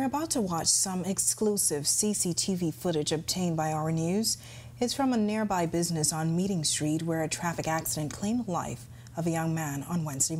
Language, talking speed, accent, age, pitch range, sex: English, 190 wpm, American, 30-49, 150-185 Hz, female